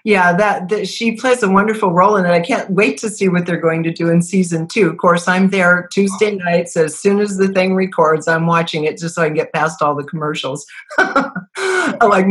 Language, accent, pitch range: English, American, 155-200 Hz